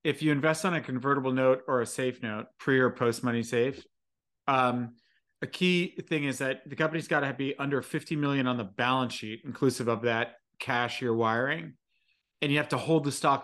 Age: 40-59